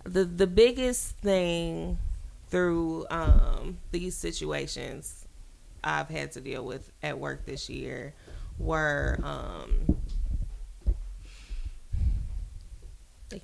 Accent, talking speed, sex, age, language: American, 90 wpm, female, 20-39, English